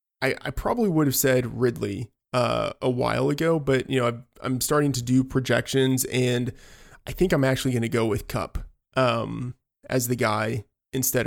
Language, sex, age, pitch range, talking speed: English, male, 20-39, 115-130 Hz, 180 wpm